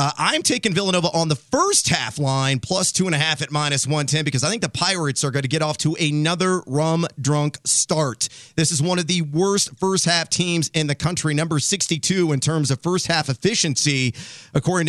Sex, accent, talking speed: male, American, 190 wpm